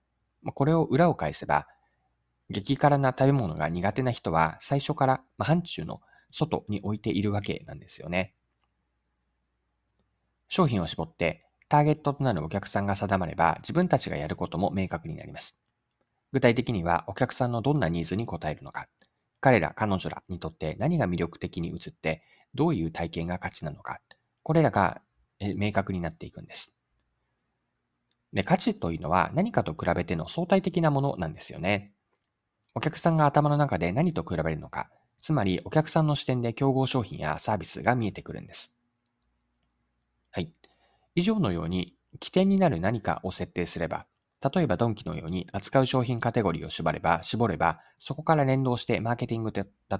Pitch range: 85-135 Hz